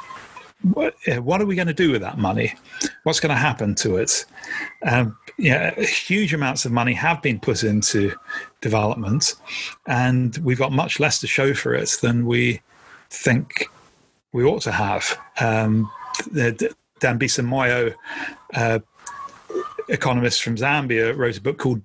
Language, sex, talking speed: English, male, 145 wpm